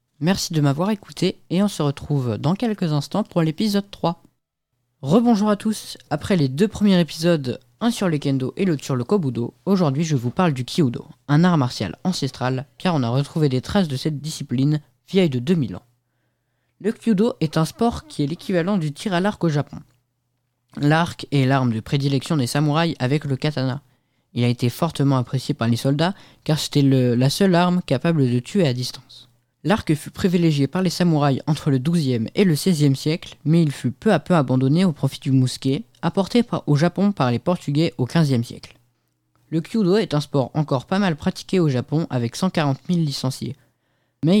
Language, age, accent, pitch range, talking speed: French, 20-39, French, 130-180 Hz, 195 wpm